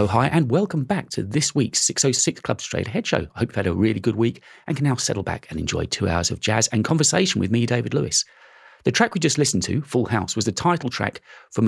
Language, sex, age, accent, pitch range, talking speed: English, male, 40-59, British, 90-135 Hz, 255 wpm